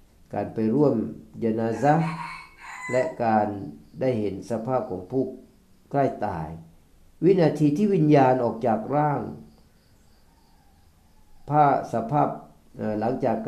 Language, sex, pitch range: Thai, male, 105-130 Hz